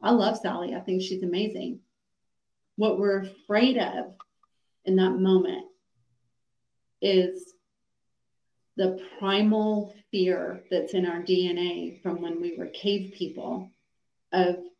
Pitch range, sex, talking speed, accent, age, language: 175-195 Hz, female, 120 wpm, American, 40-59, English